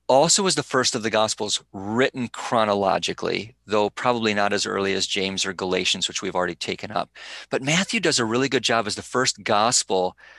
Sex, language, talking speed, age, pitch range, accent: male, English, 195 wpm, 40-59, 100-130 Hz, American